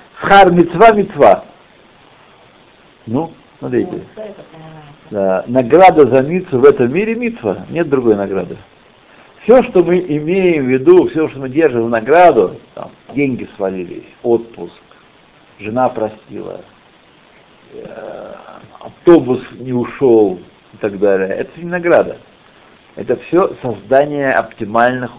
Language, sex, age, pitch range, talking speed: Russian, male, 60-79, 115-175 Hz, 115 wpm